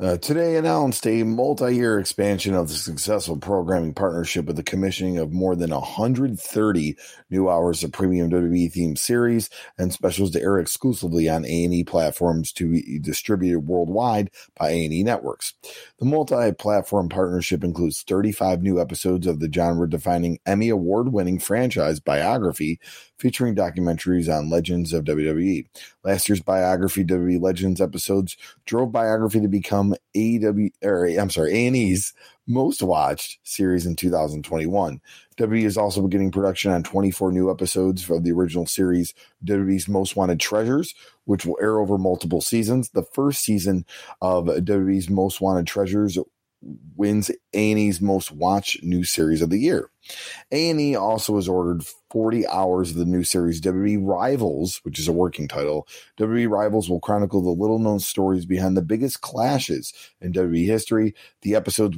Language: English